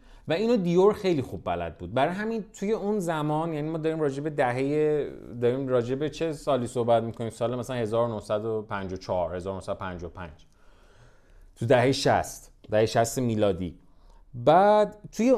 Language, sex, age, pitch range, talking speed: Persian, male, 30-49, 110-160 Hz, 145 wpm